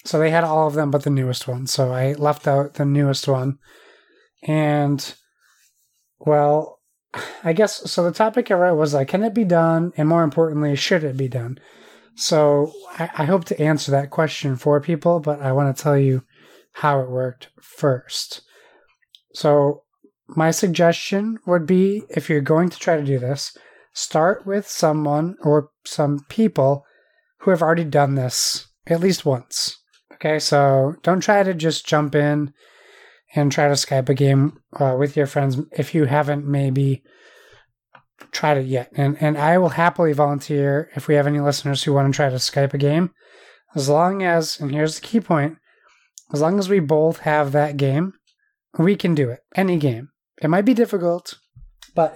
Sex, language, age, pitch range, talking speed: male, English, 30-49, 145-180 Hz, 180 wpm